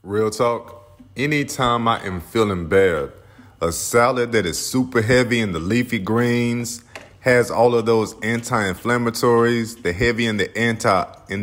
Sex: male